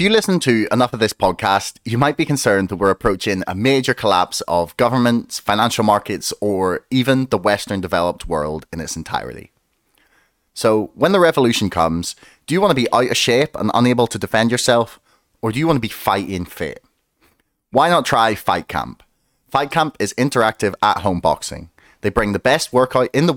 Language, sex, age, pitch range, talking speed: English, male, 30-49, 105-140 Hz, 195 wpm